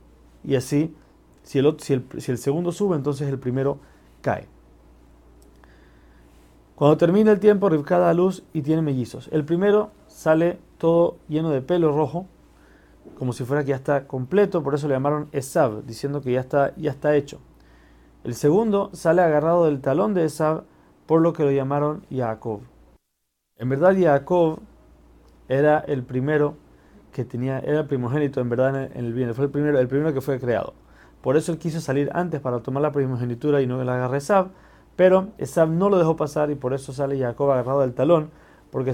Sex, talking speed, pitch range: male, 185 wpm, 125-160 Hz